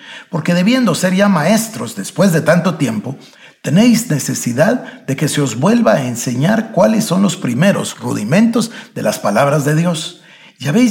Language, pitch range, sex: Spanish, 145-215 Hz, male